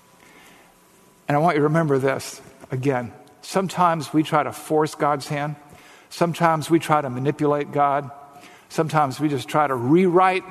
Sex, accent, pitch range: male, American, 135-165 Hz